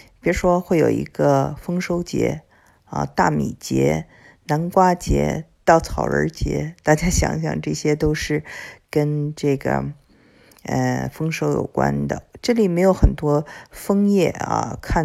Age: 50-69